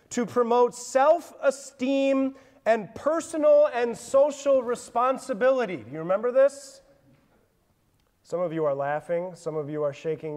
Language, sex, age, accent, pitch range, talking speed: English, male, 30-49, American, 225-300 Hz, 125 wpm